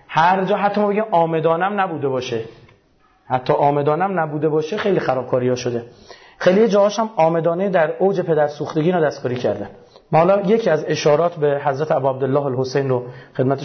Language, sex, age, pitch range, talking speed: Persian, male, 30-49, 135-175 Hz, 170 wpm